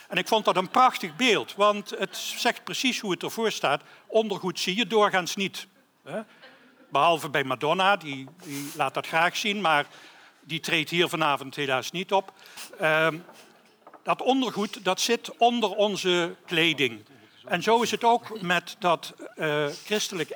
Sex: male